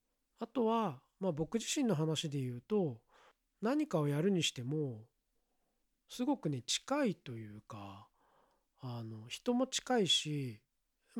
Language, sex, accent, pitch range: Japanese, male, native, 135-200 Hz